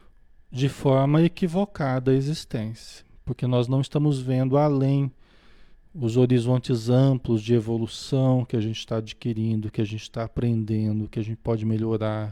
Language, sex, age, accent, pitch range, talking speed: Portuguese, male, 40-59, Brazilian, 120-200 Hz, 150 wpm